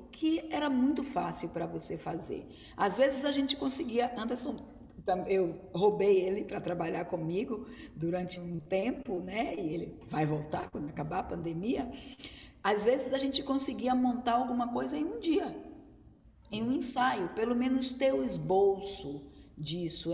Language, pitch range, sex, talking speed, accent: Portuguese, 170-245 Hz, female, 150 wpm, Brazilian